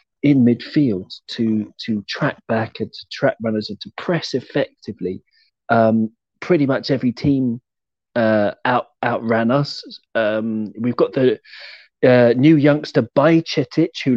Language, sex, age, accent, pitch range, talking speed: English, male, 40-59, British, 110-145 Hz, 135 wpm